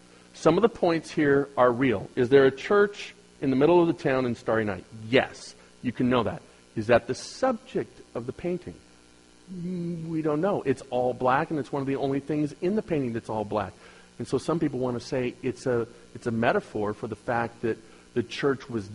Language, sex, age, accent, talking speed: English, male, 40-59, American, 220 wpm